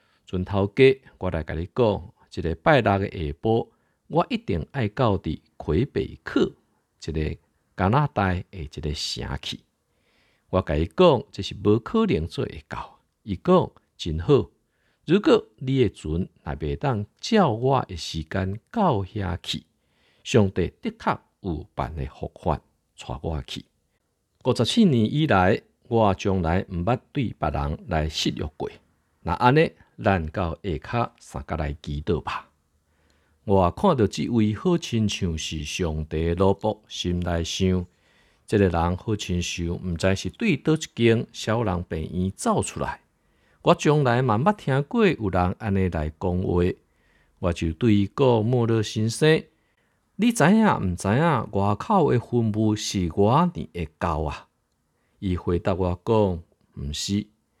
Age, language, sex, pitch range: 50-69, Chinese, male, 85-115 Hz